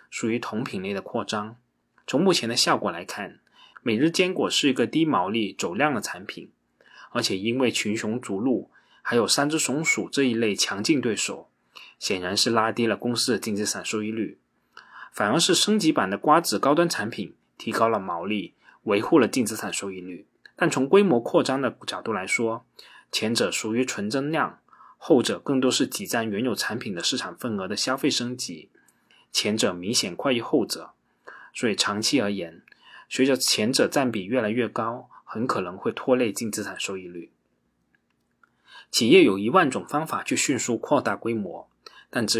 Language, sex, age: Chinese, male, 20-39